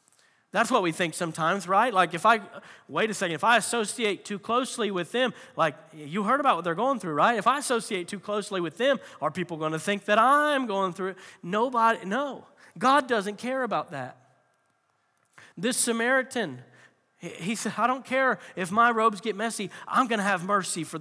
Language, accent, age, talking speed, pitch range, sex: English, American, 40-59, 200 wpm, 190-255 Hz, male